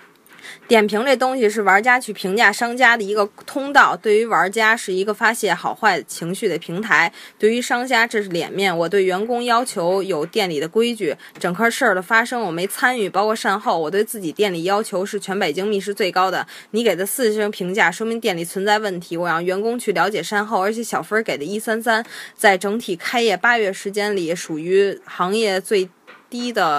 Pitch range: 185-225 Hz